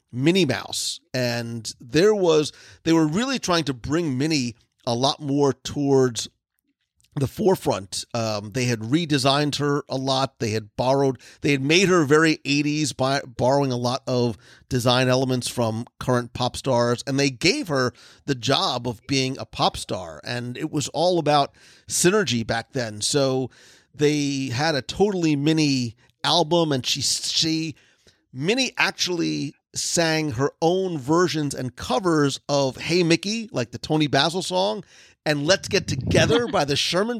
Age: 40-59